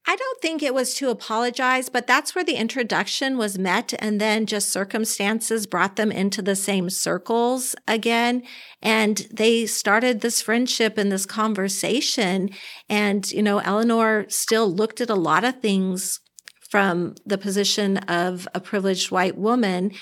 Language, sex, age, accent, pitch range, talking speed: English, female, 50-69, American, 185-220 Hz, 155 wpm